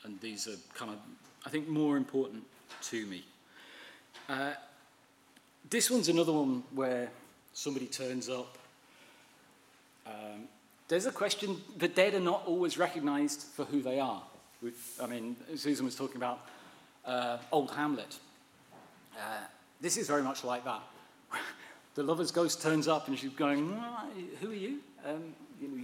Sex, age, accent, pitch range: male, 40-59, British, 130-170 Hz